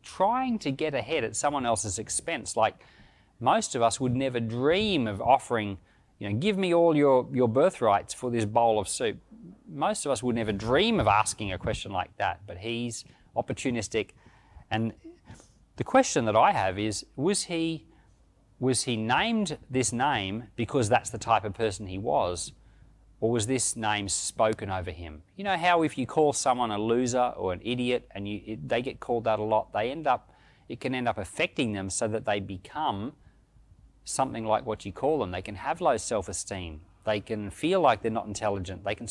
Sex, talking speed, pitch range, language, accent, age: male, 195 wpm, 105-130 Hz, English, Australian, 30-49